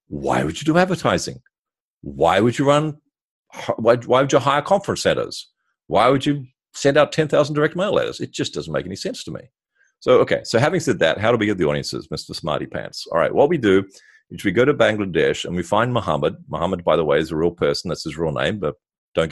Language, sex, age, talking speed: English, male, 50-69, 235 wpm